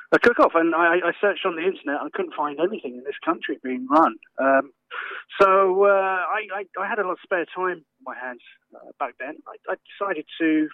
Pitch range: 145-195 Hz